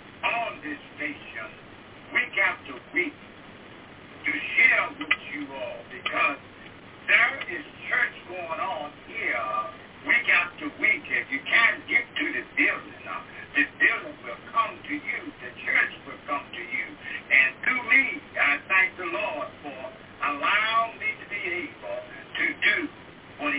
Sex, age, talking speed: male, 60-79, 145 wpm